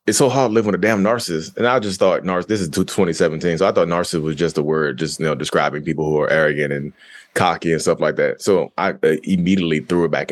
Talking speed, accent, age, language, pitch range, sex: 260 wpm, American, 20-39, English, 80-100 Hz, male